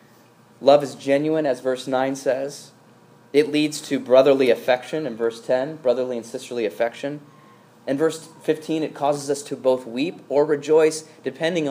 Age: 20-39